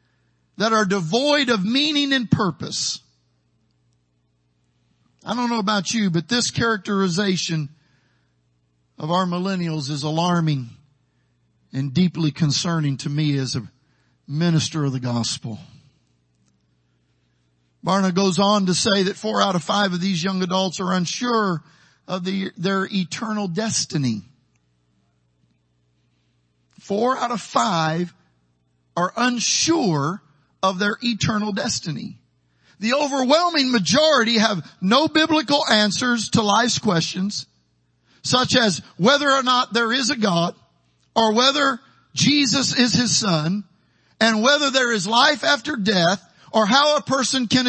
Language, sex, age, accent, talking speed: English, male, 50-69, American, 125 wpm